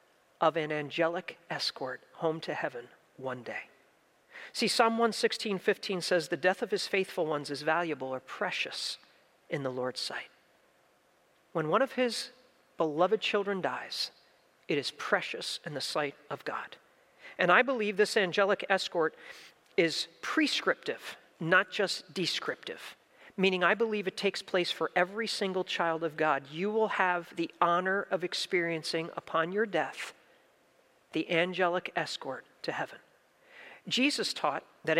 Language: English